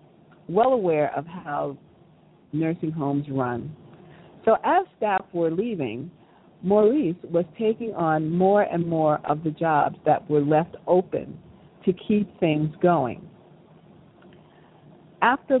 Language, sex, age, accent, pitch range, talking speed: English, female, 50-69, American, 160-205 Hz, 120 wpm